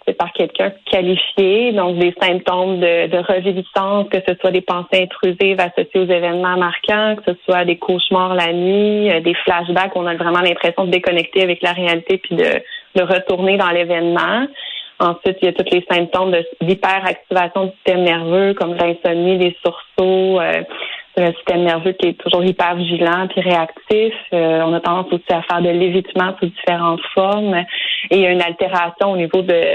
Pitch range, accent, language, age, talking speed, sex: 175-195 Hz, Canadian, French, 30-49, 185 wpm, female